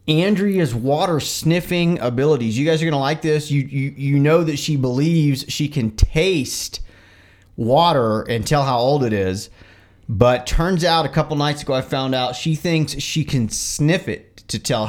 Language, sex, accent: English, male, American